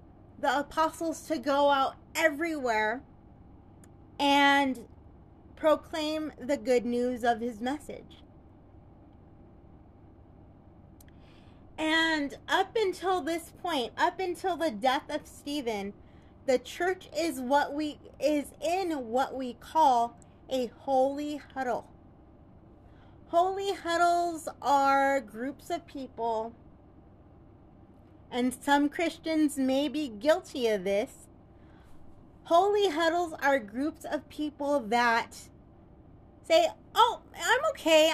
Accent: American